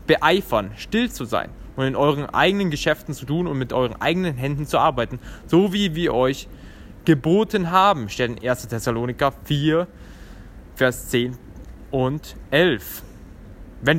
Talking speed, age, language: 140 wpm, 20-39, German